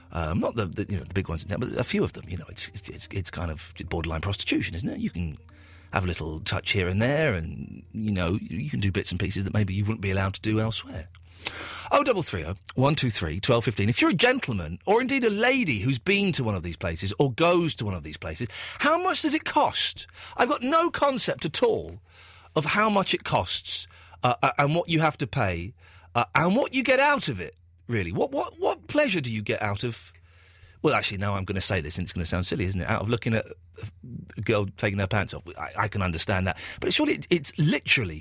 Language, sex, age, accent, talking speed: English, male, 40-59, British, 245 wpm